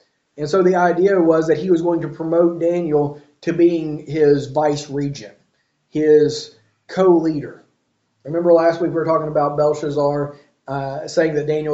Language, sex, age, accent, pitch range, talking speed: English, male, 40-59, American, 145-170 Hz, 160 wpm